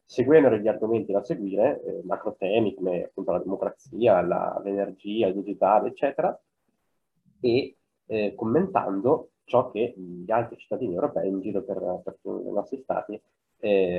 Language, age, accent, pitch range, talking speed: Italian, 20-39, native, 105-125 Hz, 140 wpm